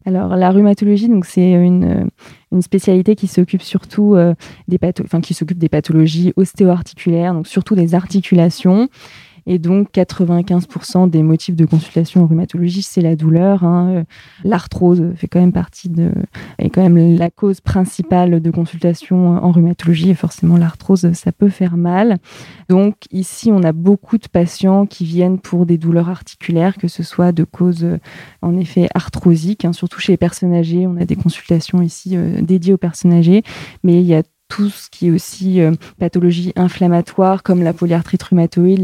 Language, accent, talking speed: French, French, 175 wpm